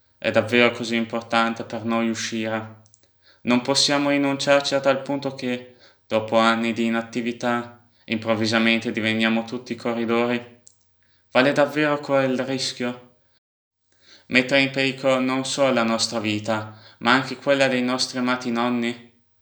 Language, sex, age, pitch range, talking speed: Italian, male, 20-39, 110-120 Hz, 125 wpm